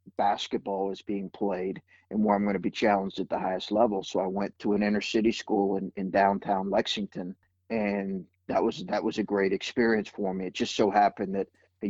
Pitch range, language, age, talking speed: 95-110 Hz, English, 40-59, 215 wpm